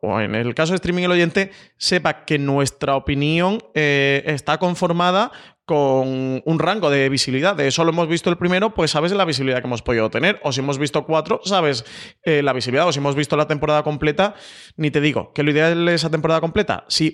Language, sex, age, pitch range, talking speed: Spanish, male, 30-49, 130-160 Hz, 215 wpm